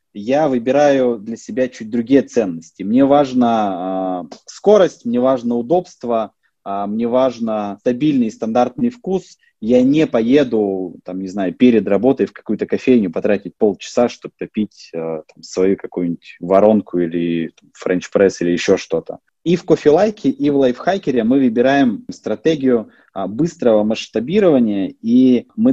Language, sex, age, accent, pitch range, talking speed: Russian, male, 20-39, native, 110-180 Hz, 140 wpm